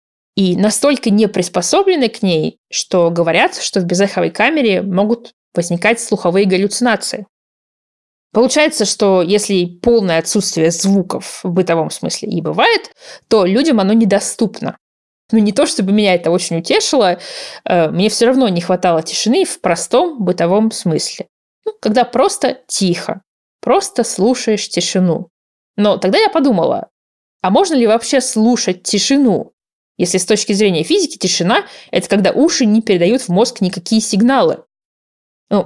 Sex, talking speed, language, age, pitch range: female, 140 wpm, Russian, 20-39, 180-240 Hz